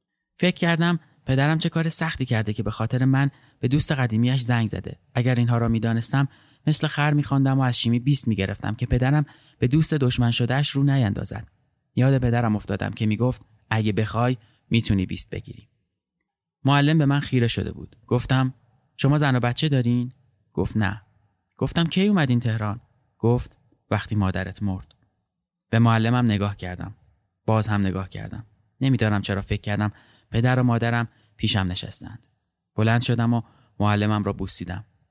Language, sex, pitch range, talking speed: Persian, male, 110-140 Hz, 160 wpm